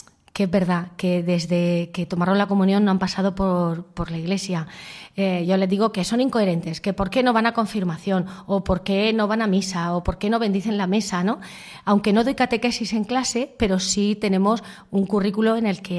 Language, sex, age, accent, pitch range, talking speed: Spanish, female, 30-49, Spanish, 185-235 Hz, 220 wpm